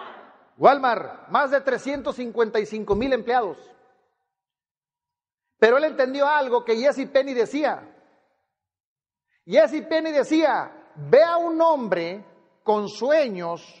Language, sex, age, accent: Spanish, male, 50-69, Mexican